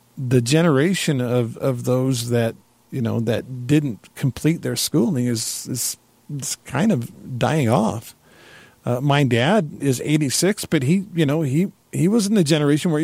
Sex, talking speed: male, 165 wpm